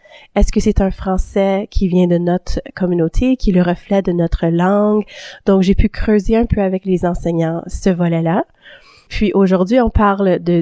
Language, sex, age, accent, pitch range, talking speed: French, female, 30-49, Canadian, 175-205 Hz, 190 wpm